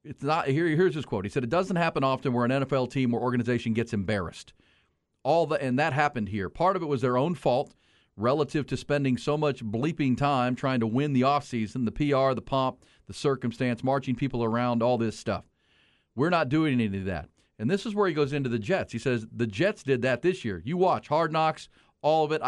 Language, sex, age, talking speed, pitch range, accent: English, male, 40-59, 230 wpm, 115-145 Hz, American